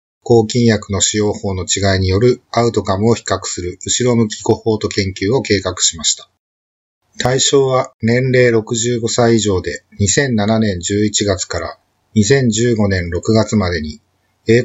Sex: male